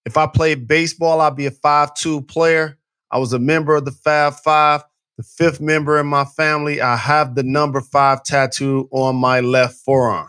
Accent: American